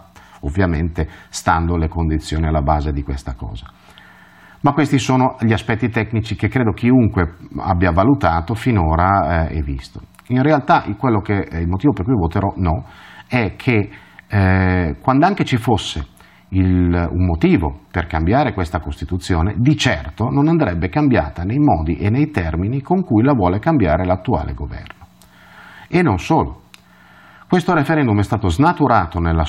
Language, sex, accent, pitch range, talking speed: Italian, male, native, 85-135 Hz, 150 wpm